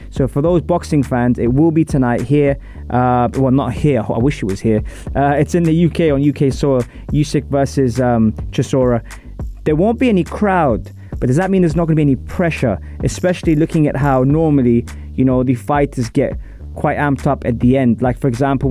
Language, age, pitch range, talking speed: English, 20-39, 115-155 Hz, 210 wpm